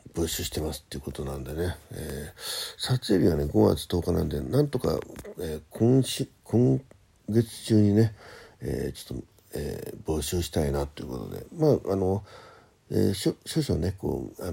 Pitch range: 80-110 Hz